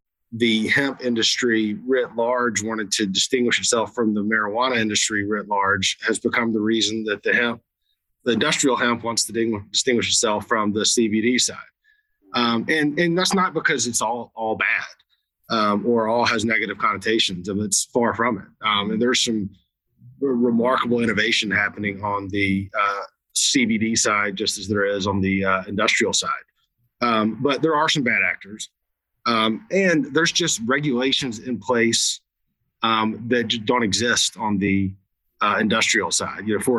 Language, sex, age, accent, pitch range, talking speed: English, male, 30-49, American, 105-120 Hz, 170 wpm